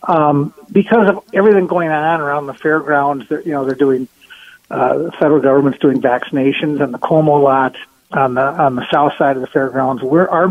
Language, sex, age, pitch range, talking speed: English, male, 50-69, 140-175 Hz, 195 wpm